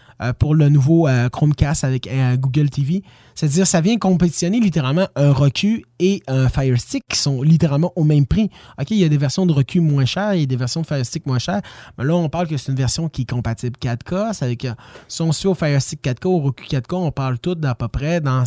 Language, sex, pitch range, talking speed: French, male, 130-180 Hz, 245 wpm